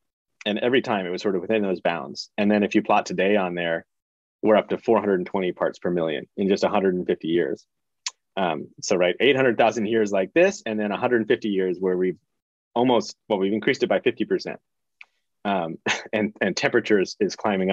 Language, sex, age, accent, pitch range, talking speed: English, male, 30-49, American, 95-110 Hz, 185 wpm